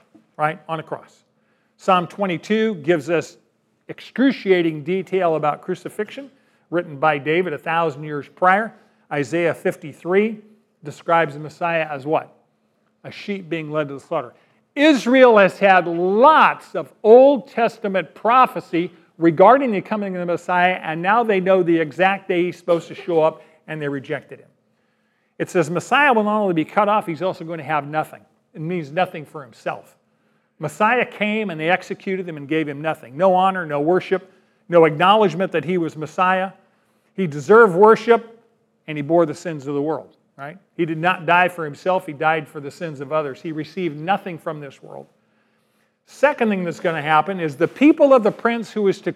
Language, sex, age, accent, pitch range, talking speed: English, male, 50-69, American, 155-195 Hz, 180 wpm